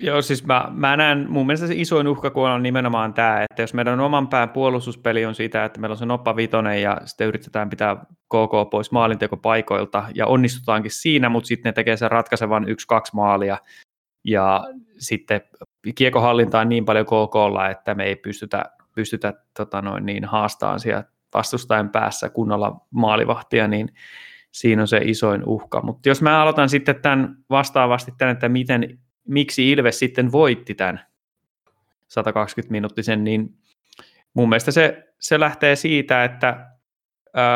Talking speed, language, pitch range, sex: 155 wpm, Finnish, 110-130 Hz, male